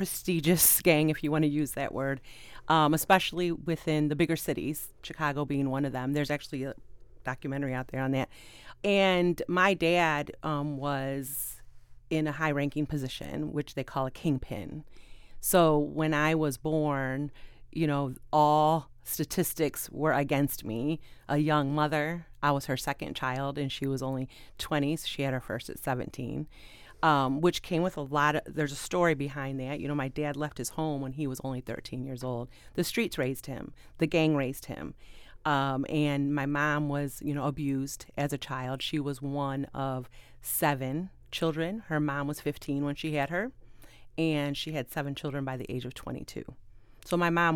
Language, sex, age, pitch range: English, female, 30-49, 135-155 Hz